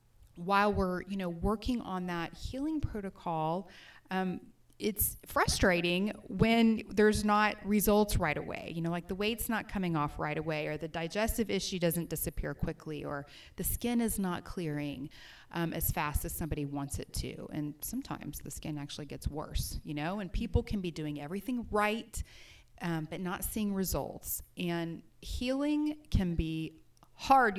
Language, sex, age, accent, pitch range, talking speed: English, female, 30-49, American, 165-215 Hz, 165 wpm